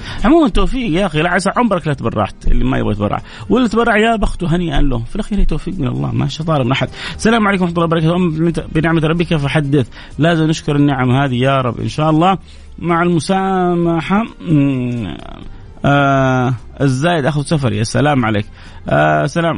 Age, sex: 30-49, male